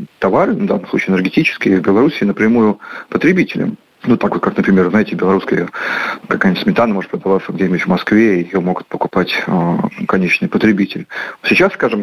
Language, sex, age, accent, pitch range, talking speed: Russian, male, 40-59, native, 95-110 Hz, 150 wpm